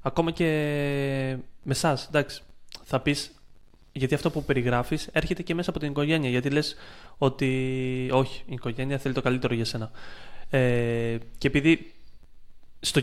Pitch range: 125-160 Hz